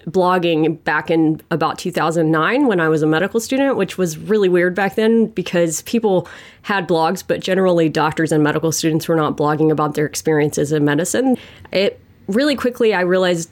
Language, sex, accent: English, female, American